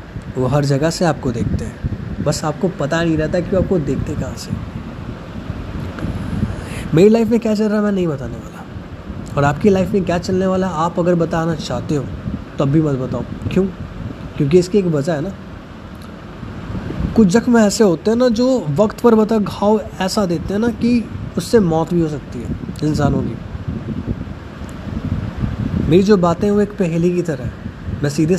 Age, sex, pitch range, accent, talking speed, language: 20-39, male, 110-175 Hz, native, 185 wpm, Hindi